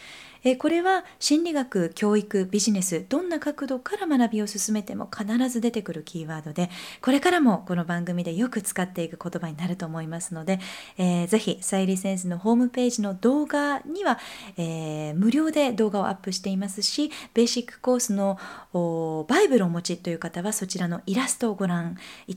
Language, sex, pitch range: Japanese, female, 180-255 Hz